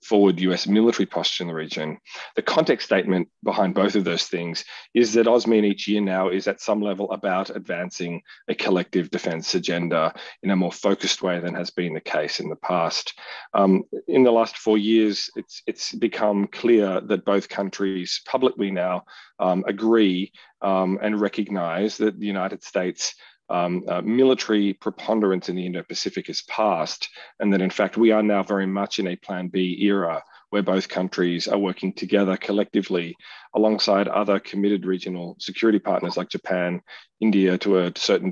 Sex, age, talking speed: male, 40-59, 170 wpm